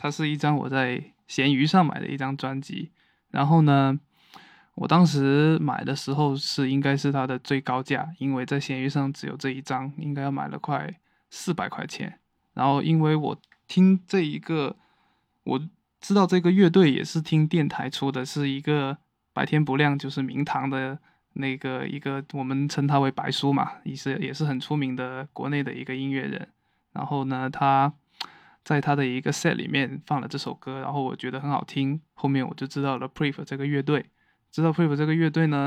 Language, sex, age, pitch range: Chinese, male, 20-39, 135-150 Hz